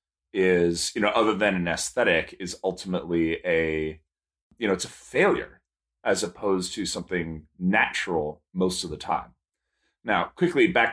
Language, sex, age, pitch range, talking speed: English, male, 30-49, 85-110 Hz, 150 wpm